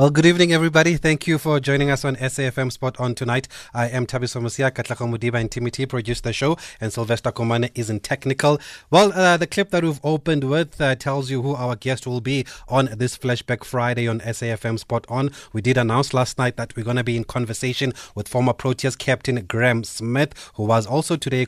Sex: male